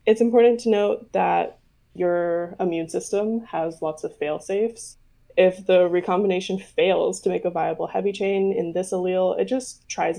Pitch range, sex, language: 170-220 Hz, female, English